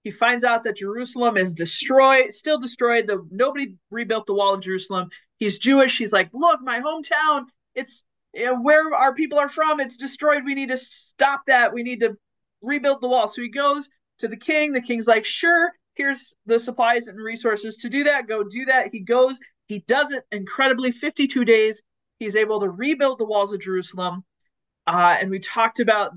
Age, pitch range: 30-49, 195-255 Hz